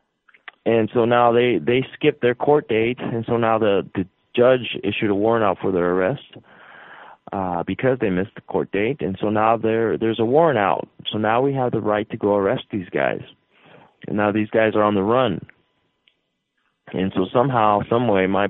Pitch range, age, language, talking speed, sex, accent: 105-125 Hz, 30-49, English, 200 wpm, male, American